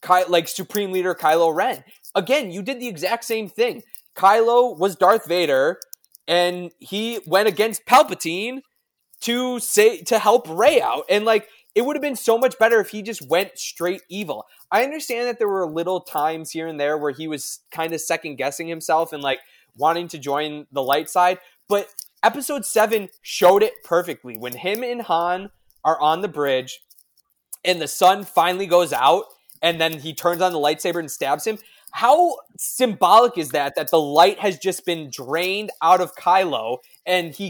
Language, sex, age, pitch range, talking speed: English, male, 20-39, 160-220 Hz, 180 wpm